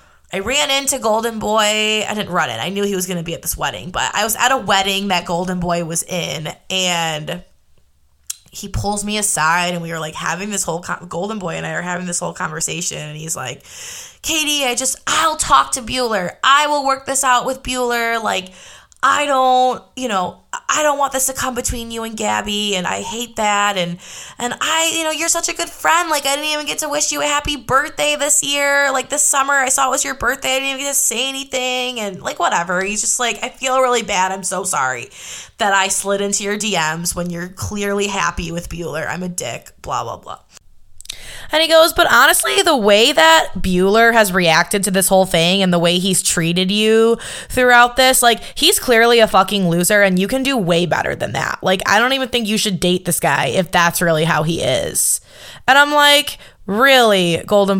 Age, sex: 20-39, female